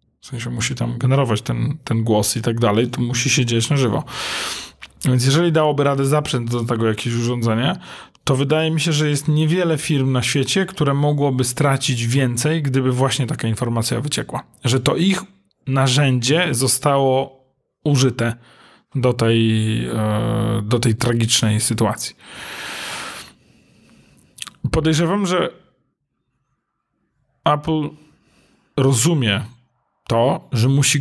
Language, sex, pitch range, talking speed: Polish, male, 120-145 Hz, 125 wpm